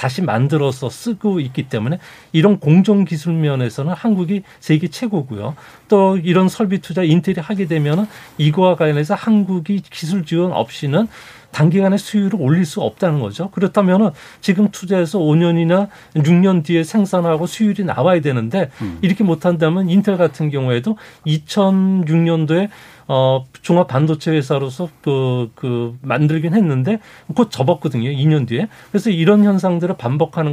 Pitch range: 145-190 Hz